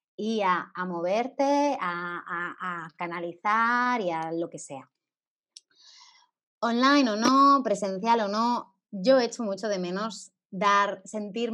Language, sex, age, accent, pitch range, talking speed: Spanish, female, 20-39, Spanish, 175-235 Hz, 125 wpm